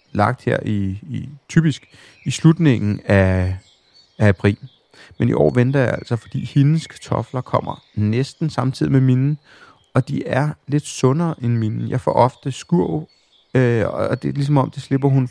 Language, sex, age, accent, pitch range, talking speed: Danish, male, 30-49, native, 110-135 Hz, 170 wpm